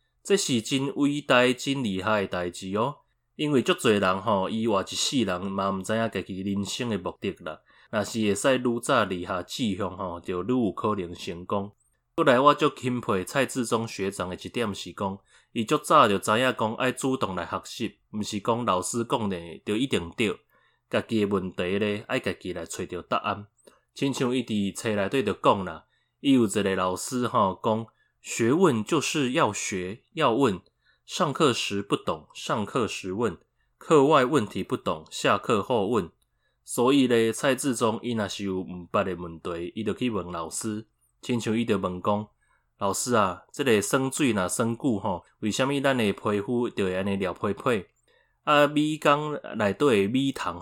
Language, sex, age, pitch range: Chinese, male, 20-39, 100-125 Hz